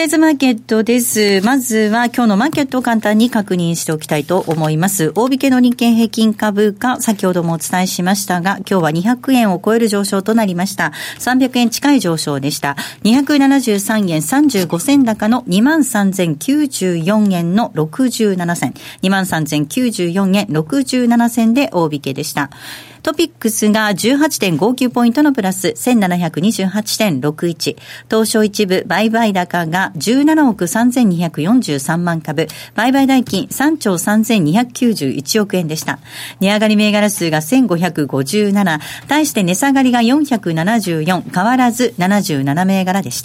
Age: 40-59